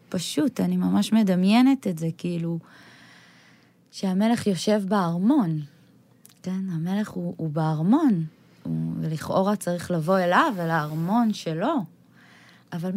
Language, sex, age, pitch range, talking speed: Hebrew, female, 20-39, 185-270 Hz, 110 wpm